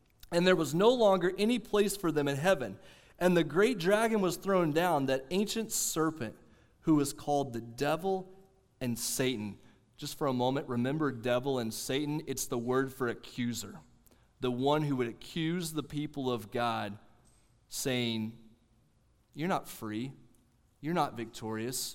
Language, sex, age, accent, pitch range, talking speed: English, male, 30-49, American, 115-160 Hz, 155 wpm